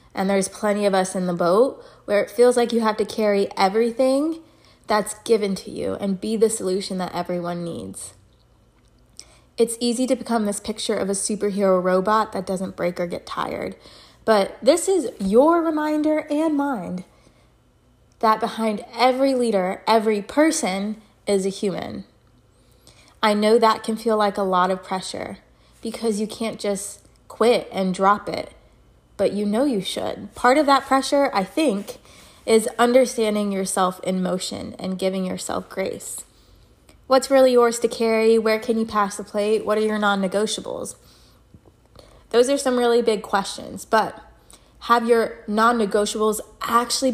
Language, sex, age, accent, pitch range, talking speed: English, female, 20-39, American, 195-240 Hz, 160 wpm